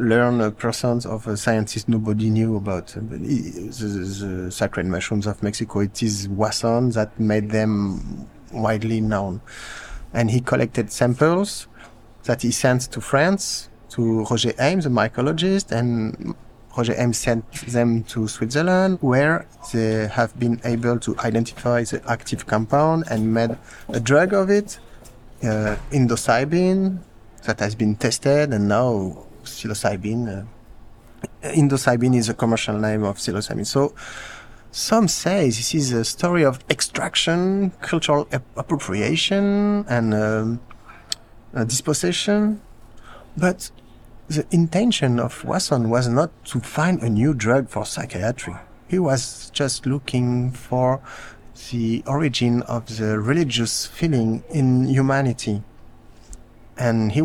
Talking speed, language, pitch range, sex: 125 wpm, Danish, 110-140 Hz, male